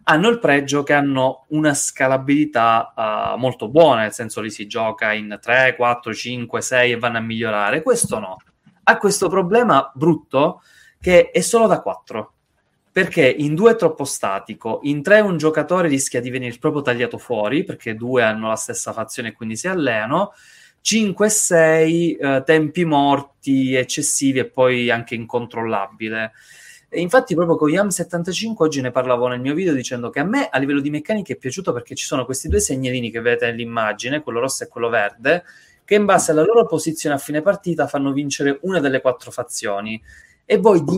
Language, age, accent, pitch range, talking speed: Italian, 20-39, native, 125-160 Hz, 180 wpm